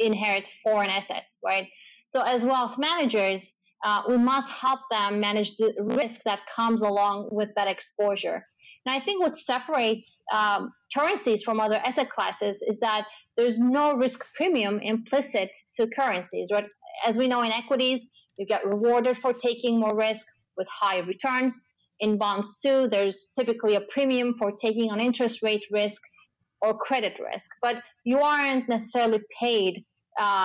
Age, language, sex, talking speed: 30-49, English, female, 160 wpm